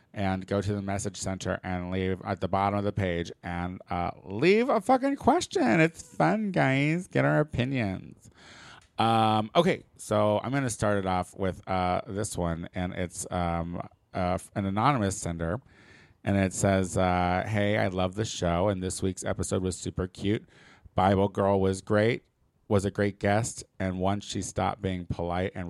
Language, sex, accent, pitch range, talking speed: English, male, American, 90-105 Hz, 180 wpm